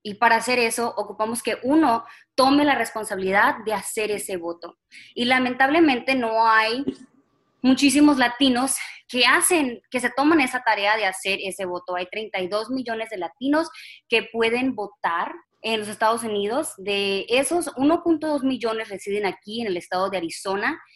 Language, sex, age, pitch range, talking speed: English, female, 20-39, 195-255 Hz, 155 wpm